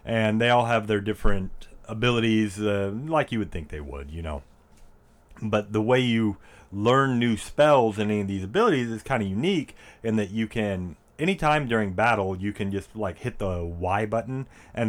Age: 30-49